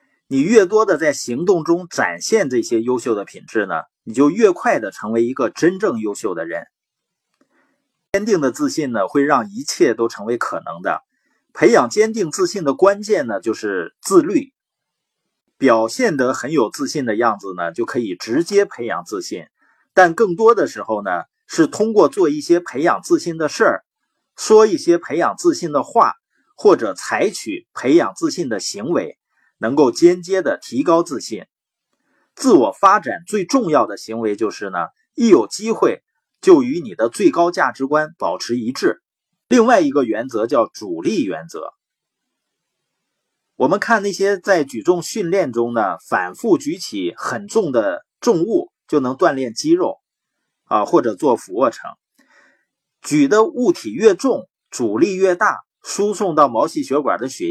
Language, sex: Chinese, male